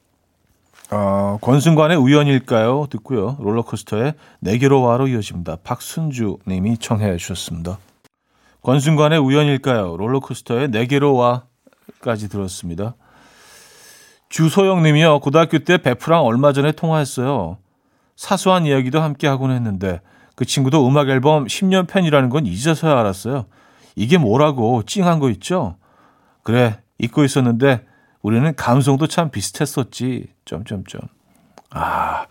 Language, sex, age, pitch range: Korean, male, 40-59, 105-155 Hz